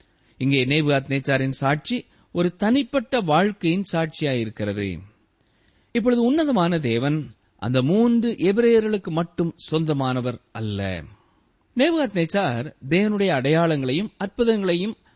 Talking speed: 50 wpm